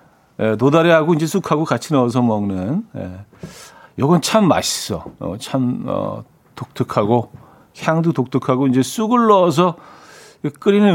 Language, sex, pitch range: Korean, male, 120-175 Hz